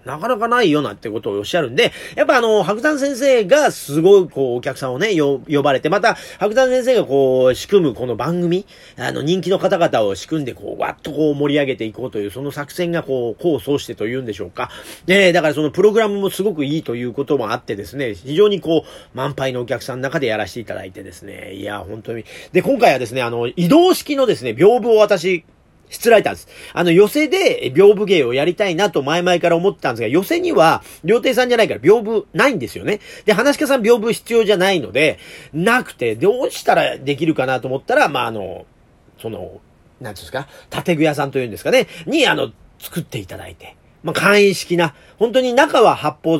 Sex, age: male, 40-59